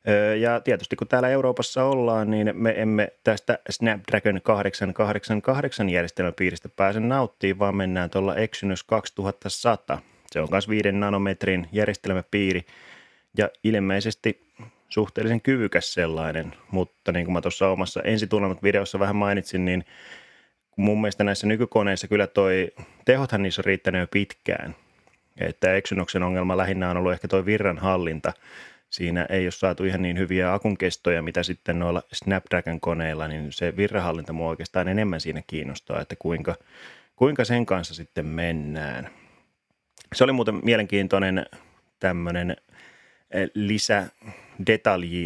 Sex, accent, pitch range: male, native, 90-105 Hz